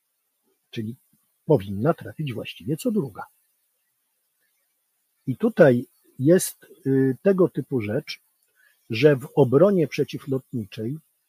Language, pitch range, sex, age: Polish, 120-155 Hz, male, 50-69